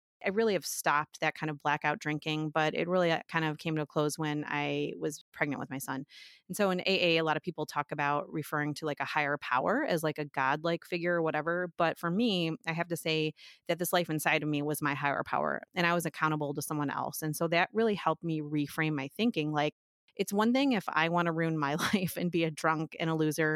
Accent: American